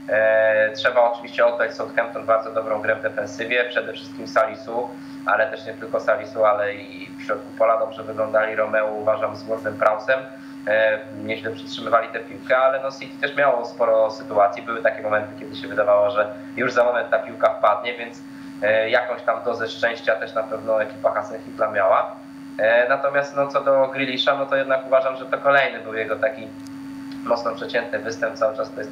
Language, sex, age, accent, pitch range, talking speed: Polish, male, 20-39, native, 110-170 Hz, 170 wpm